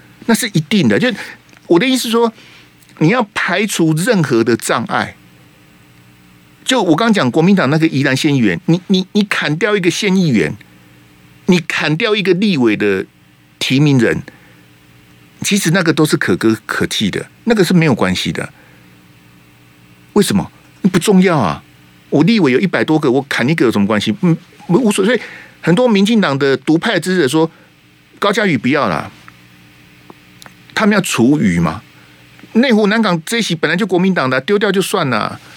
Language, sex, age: Chinese, male, 50-69